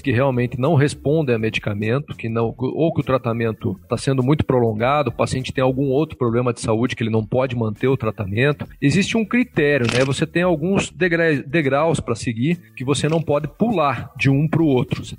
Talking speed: 210 wpm